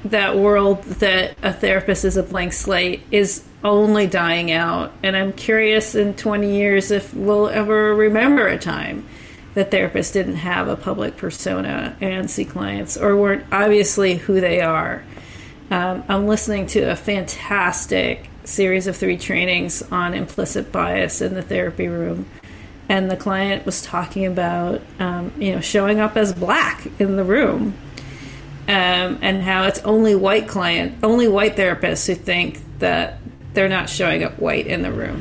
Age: 40-59